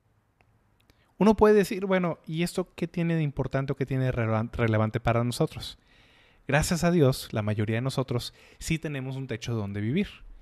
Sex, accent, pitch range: male, Mexican, 115-145 Hz